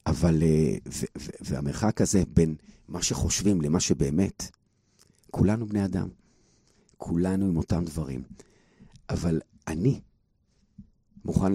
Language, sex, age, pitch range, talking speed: Hebrew, male, 50-69, 85-105 Hz, 95 wpm